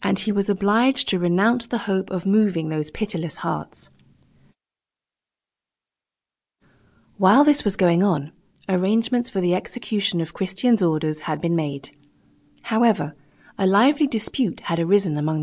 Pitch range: 165-210 Hz